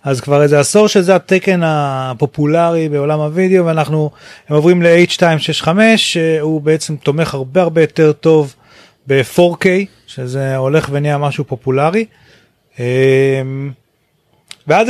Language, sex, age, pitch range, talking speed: Hebrew, male, 30-49, 140-185 Hz, 105 wpm